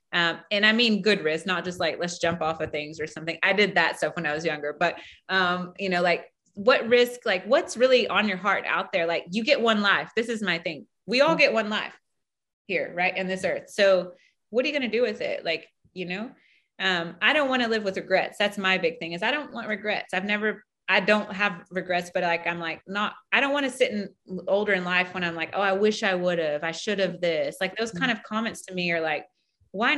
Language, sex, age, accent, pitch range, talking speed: English, female, 30-49, American, 185-235 Hz, 260 wpm